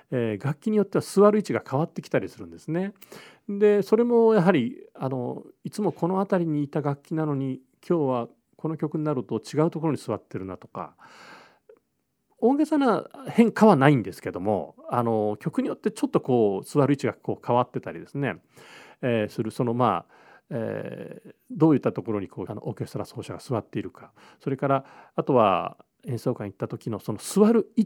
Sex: male